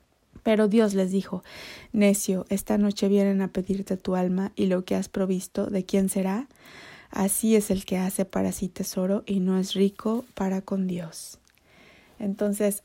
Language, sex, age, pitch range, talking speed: Spanish, female, 20-39, 185-210 Hz, 170 wpm